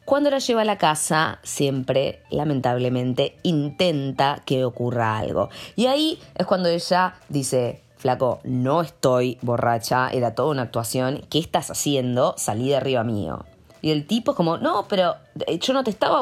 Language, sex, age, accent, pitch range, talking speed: Spanish, female, 20-39, Argentinian, 140-205 Hz, 165 wpm